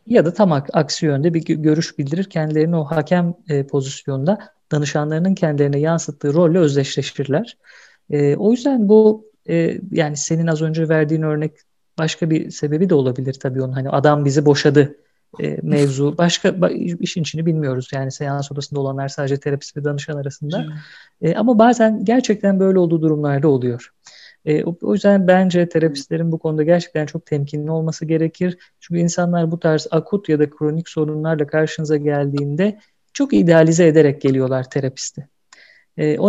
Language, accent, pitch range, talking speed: Turkish, native, 145-170 Hz, 155 wpm